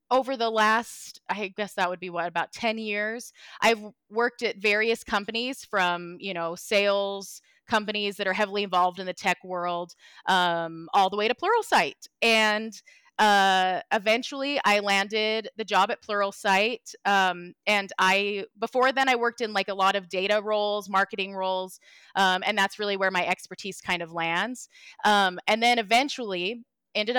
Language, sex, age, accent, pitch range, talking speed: English, female, 20-39, American, 185-225 Hz, 170 wpm